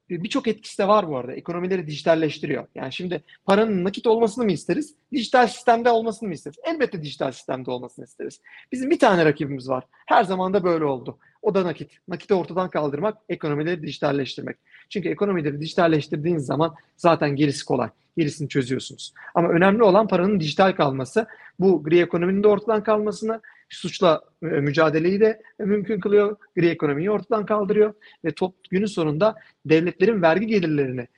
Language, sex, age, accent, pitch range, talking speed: Turkish, male, 40-59, native, 155-215 Hz, 155 wpm